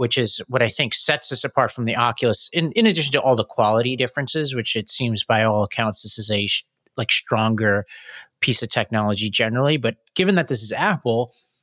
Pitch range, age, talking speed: 115-135 Hz, 30-49, 205 wpm